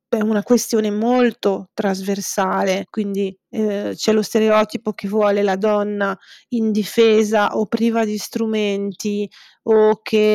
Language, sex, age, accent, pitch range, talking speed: Italian, female, 30-49, native, 200-230 Hz, 120 wpm